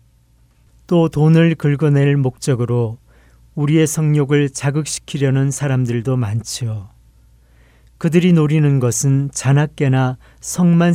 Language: Korean